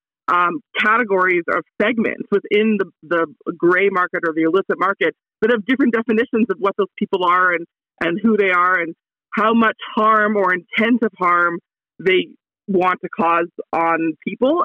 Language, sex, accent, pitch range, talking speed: English, female, American, 190-230 Hz, 170 wpm